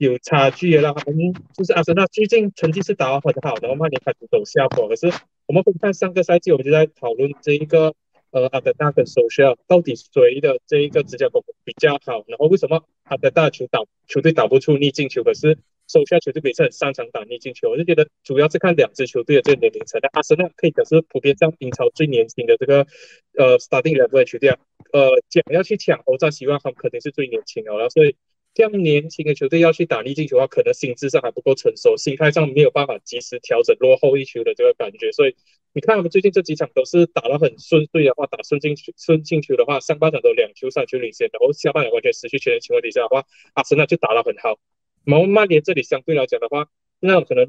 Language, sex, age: Chinese, male, 20-39